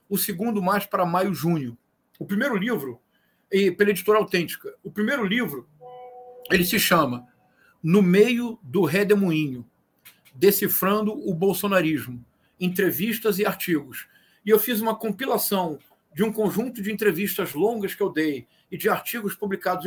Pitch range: 180-215 Hz